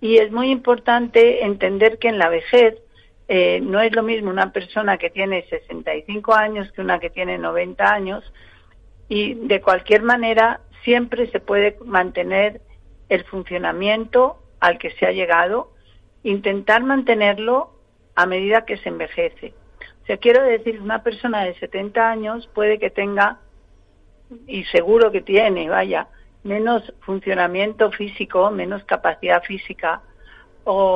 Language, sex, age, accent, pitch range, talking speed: Spanish, female, 50-69, Spanish, 190-235 Hz, 140 wpm